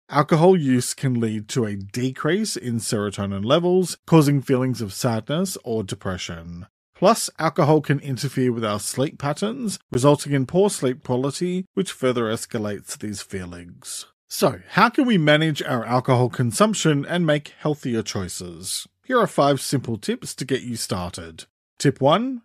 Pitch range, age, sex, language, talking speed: 110-160 Hz, 40-59, male, English, 150 wpm